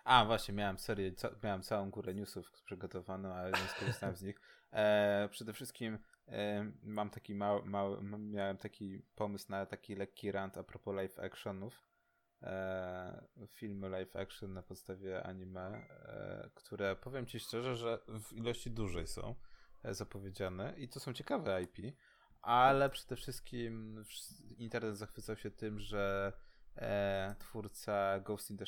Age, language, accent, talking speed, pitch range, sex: 20-39, Polish, native, 145 wpm, 100-120 Hz, male